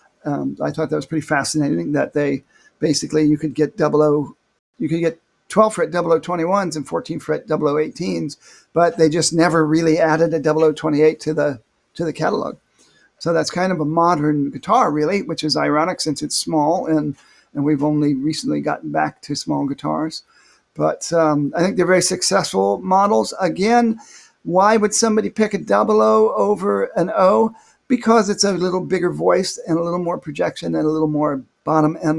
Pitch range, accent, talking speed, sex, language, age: 150-195 Hz, American, 195 wpm, male, English, 50-69